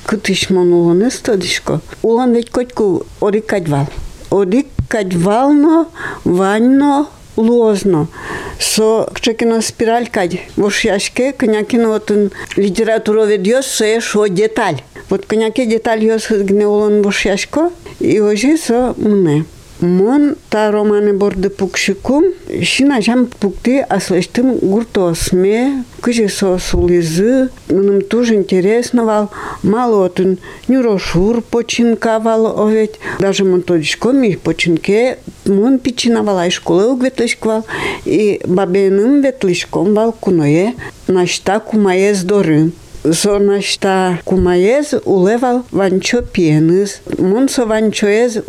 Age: 60-79